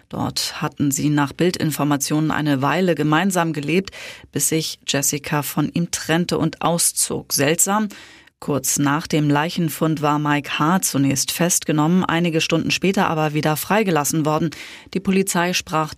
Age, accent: 30-49, German